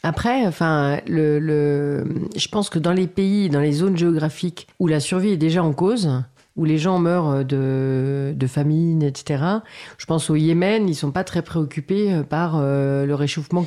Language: French